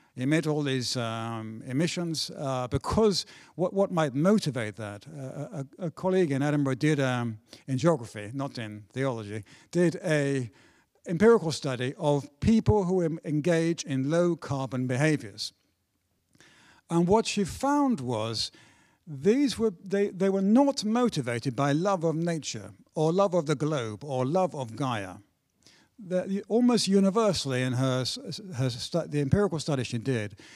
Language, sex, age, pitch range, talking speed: English, male, 60-79, 120-175 Hz, 145 wpm